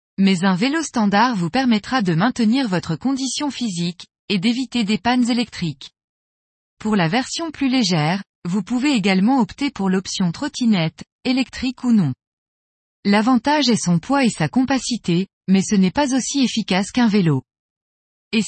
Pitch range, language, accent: 185-255 Hz, French, French